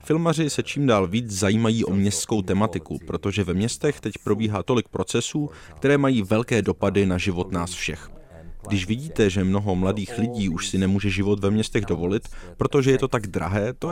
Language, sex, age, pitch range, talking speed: Czech, male, 30-49, 95-120 Hz, 185 wpm